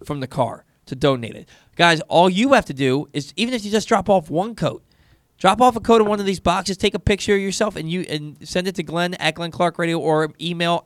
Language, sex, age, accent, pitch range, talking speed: English, male, 20-39, American, 135-185 Hz, 265 wpm